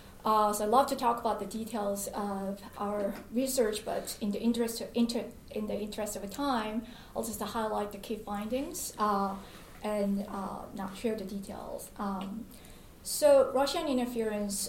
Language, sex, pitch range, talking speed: English, female, 205-235 Hz, 170 wpm